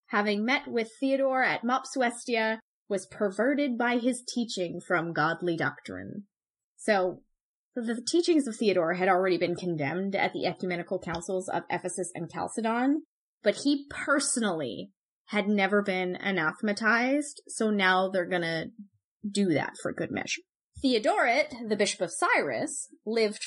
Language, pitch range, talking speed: English, 185-275 Hz, 140 wpm